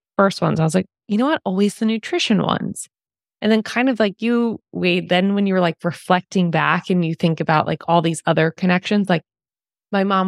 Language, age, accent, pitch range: English, 20-39, American, 165-205 Hz